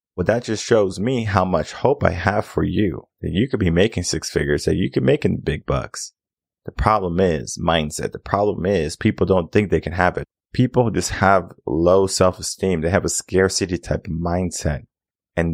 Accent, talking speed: American, 200 wpm